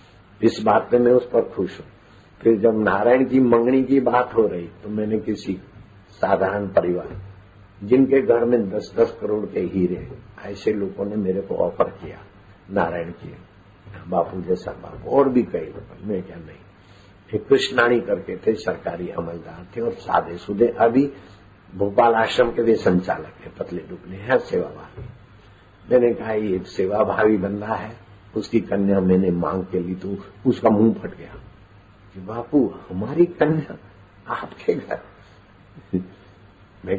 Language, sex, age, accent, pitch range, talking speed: Hindi, male, 60-79, native, 95-115 Hz, 145 wpm